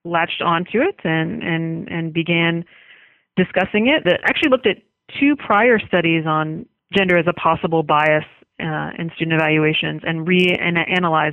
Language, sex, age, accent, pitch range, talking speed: English, female, 30-49, American, 165-200 Hz, 150 wpm